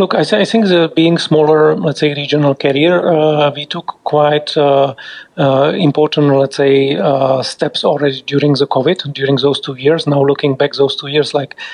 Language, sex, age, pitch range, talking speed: English, male, 40-59, 140-155 Hz, 190 wpm